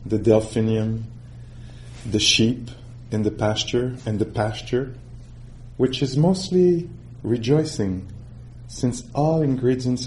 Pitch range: 110-120 Hz